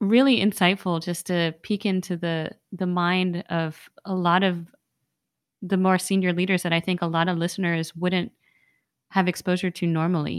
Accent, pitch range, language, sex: American, 175-205 Hz, English, female